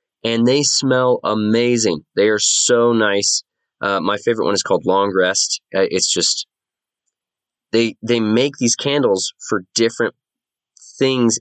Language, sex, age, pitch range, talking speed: English, male, 20-39, 90-120 Hz, 140 wpm